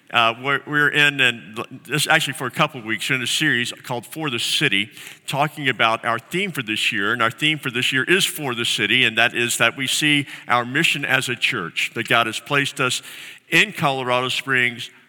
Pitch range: 130-165 Hz